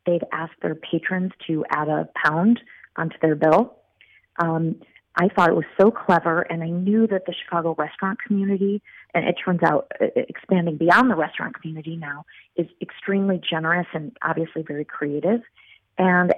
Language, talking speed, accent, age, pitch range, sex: English, 165 wpm, American, 30-49, 165-195 Hz, female